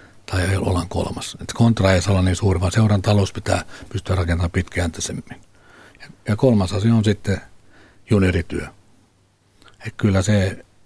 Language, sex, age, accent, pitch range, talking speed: Finnish, male, 60-79, native, 95-105 Hz, 125 wpm